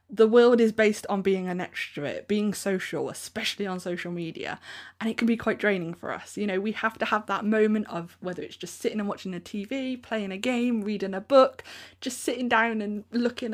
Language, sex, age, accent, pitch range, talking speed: English, female, 20-39, British, 180-230 Hz, 220 wpm